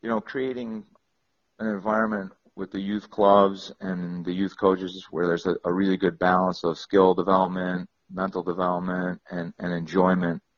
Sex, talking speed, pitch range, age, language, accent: male, 160 wpm, 90-105 Hz, 40-59, English, American